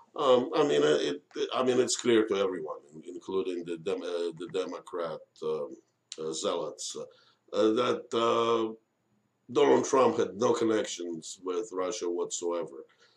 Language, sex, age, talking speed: English, male, 50-69, 145 wpm